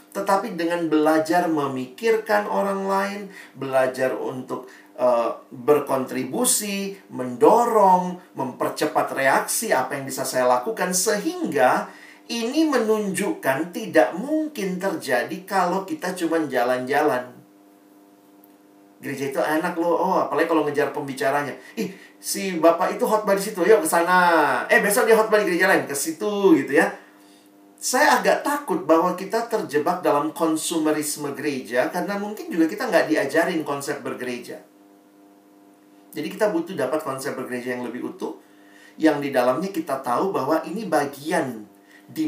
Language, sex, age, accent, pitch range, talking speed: Indonesian, male, 40-59, native, 120-185 Hz, 130 wpm